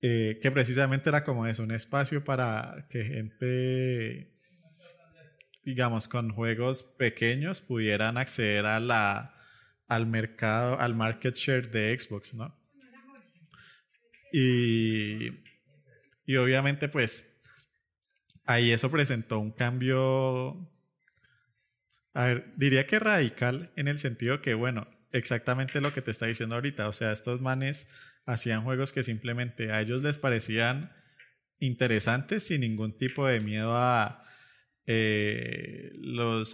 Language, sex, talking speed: English, male, 120 wpm